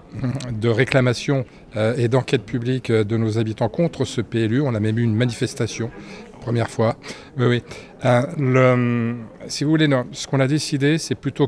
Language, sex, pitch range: French, male, 115-135 Hz